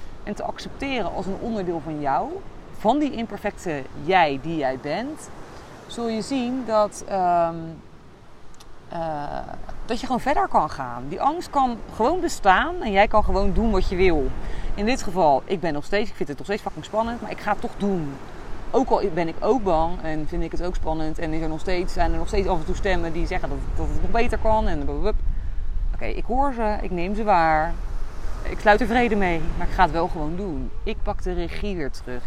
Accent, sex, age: Dutch, female, 30-49